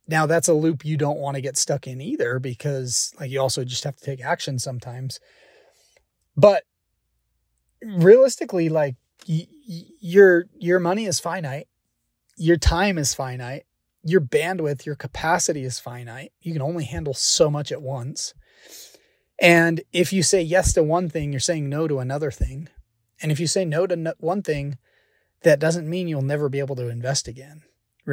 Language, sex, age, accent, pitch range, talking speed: English, male, 30-49, American, 135-170 Hz, 175 wpm